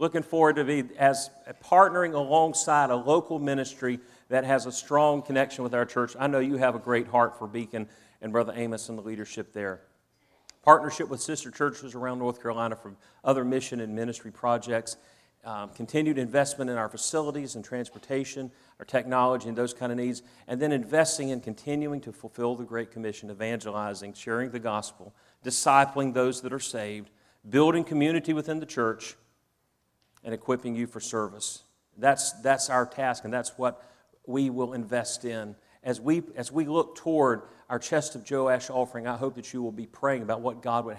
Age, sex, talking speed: 40-59, male, 185 wpm